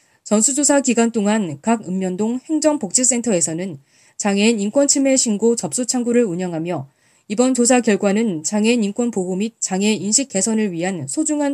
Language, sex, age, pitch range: Korean, female, 20-39, 180-255 Hz